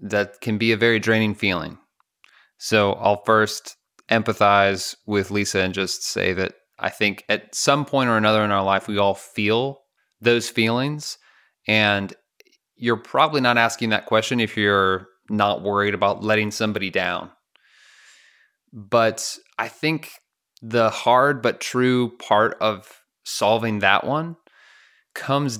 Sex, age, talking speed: male, 20-39, 140 wpm